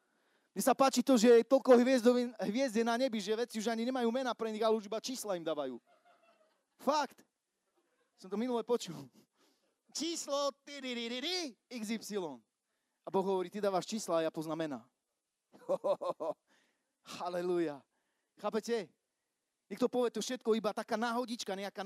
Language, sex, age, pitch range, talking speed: Slovak, male, 30-49, 200-255 Hz, 130 wpm